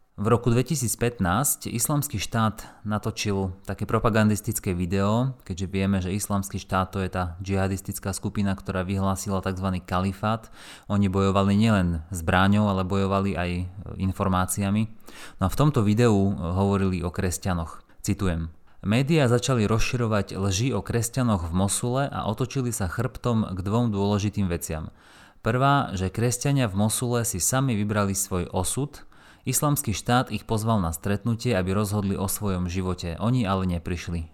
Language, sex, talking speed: Slovak, male, 140 wpm